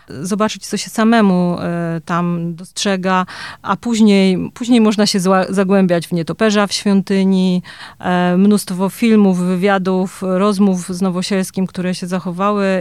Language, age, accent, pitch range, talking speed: Polish, 30-49, native, 185-225 Hz, 115 wpm